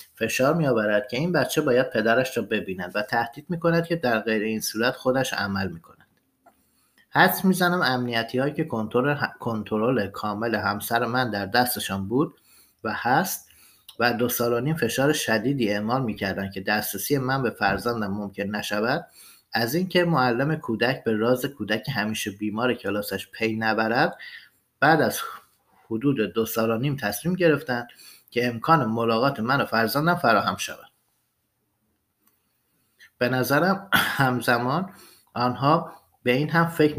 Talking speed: 135 wpm